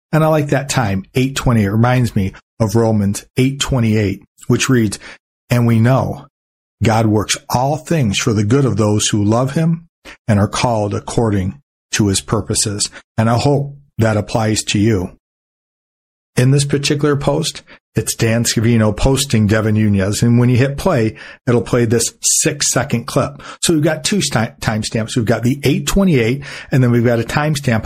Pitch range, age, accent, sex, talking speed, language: 110-135 Hz, 50-69, American, male, 170 wpm, English